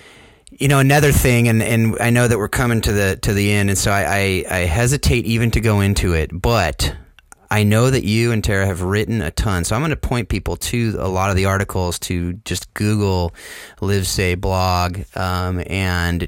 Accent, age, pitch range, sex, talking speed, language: American, 30-49, 90-105 Hz, male, 215 wpm, English